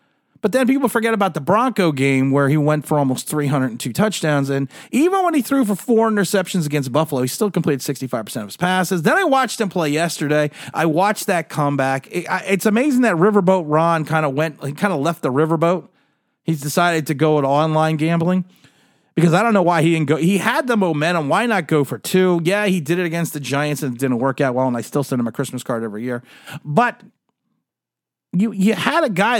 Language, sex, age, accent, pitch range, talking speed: English, male, 40-59, American, 150-200 Hz, 225 wpm